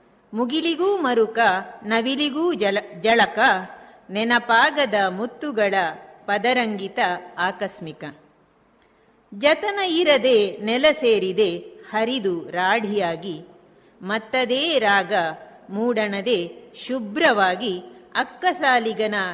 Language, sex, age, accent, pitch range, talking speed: Kannada, female, 50-69, native, 200-285 Hz, 55 wpm